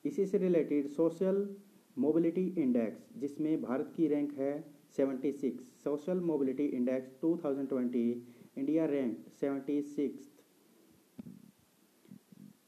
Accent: native